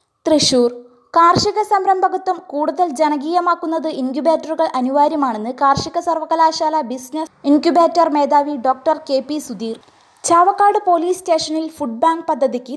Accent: native